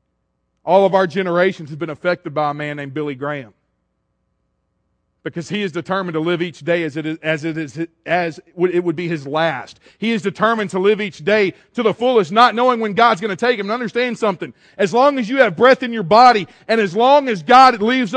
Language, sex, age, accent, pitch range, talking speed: English, male, 40-59, American, 150-235 Hz, 210 wpm